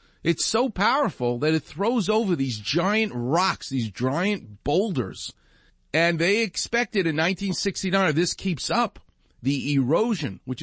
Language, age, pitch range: English, 50-69, 120-185 Hz